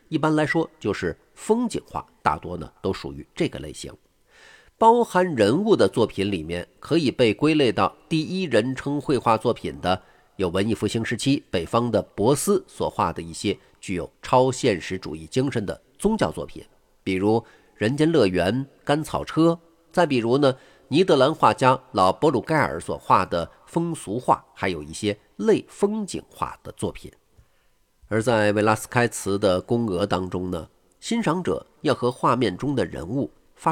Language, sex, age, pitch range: Chinese, male, 50-69, 100-155 Hz